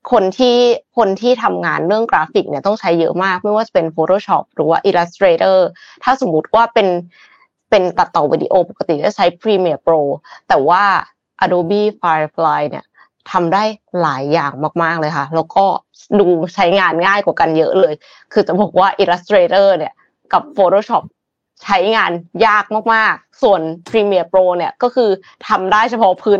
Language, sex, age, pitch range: Thai, female, 20-39, 175-220 Hz